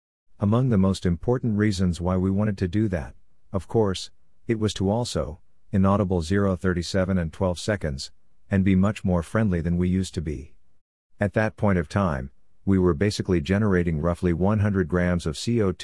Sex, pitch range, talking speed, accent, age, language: male, 85-100 Hz, 175 wpm, American, 50-69, English